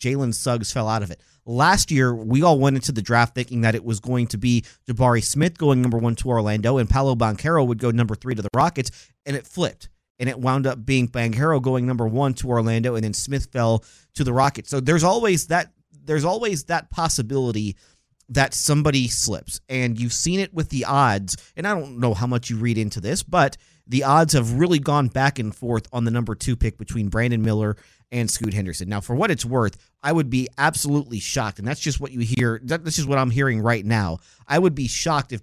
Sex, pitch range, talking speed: male, 115-150 Hz, 230 wpm